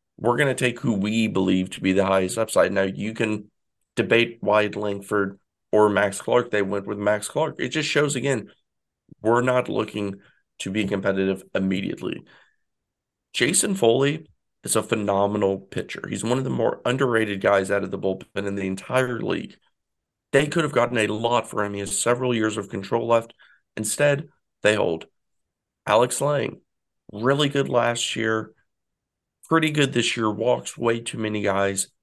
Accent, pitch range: American, 100-125 Hz